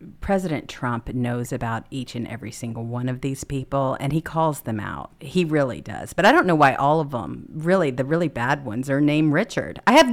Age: 50-69